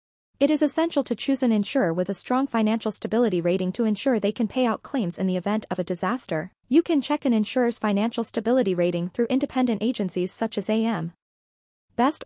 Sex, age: female, 20-39